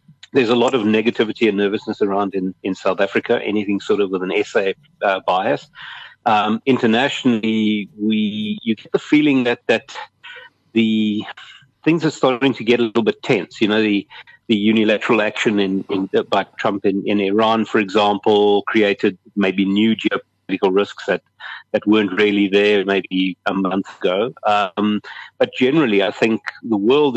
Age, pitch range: 50-69, 100-115 Hz